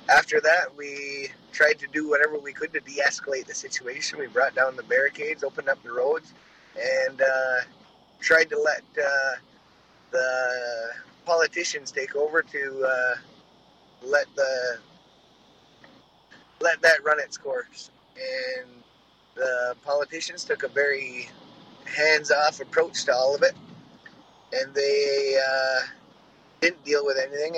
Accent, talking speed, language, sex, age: American, 130 wpm, English, male, 20-39